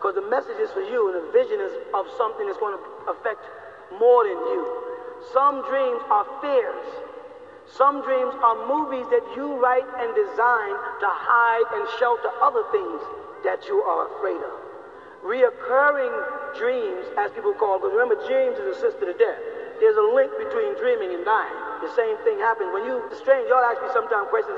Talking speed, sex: 185 wpm, male